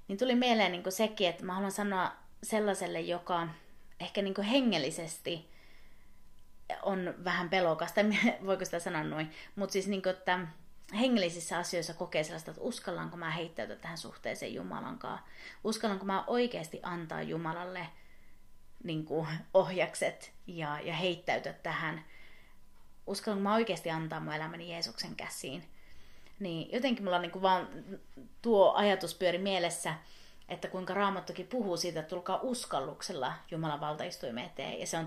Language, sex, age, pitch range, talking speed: Finnish, female, 30-49, 165-195 Hz, 135 wpm